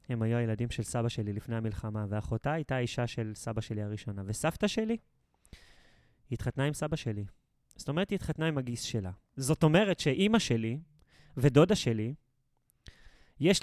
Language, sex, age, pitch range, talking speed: Hebrew, male, 20-39, 120-155 Hz, 150 wpm